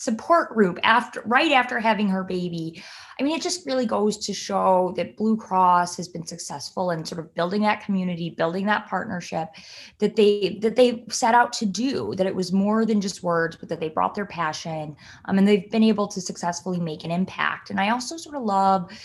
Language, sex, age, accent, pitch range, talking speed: English, female, 20-39, American, 170-220 Hz, 215 wpm